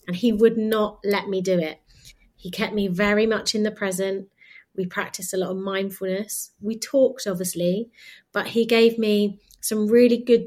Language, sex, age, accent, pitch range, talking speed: English, female, 30-49, British, 190-240 Hz, 185 wpm